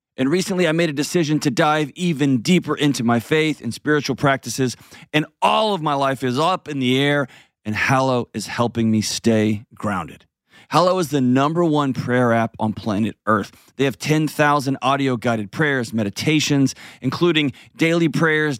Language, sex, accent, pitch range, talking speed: English, male, American, 120-150 Hz, 170 wpm